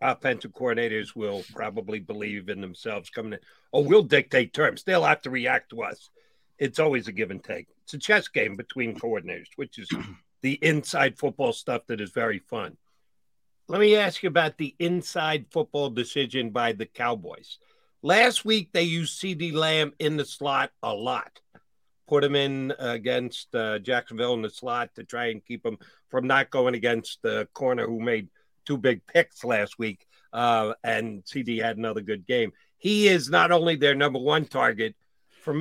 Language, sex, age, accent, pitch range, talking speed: English, male, 50-69, American, 115-170 Hz, 180 wpm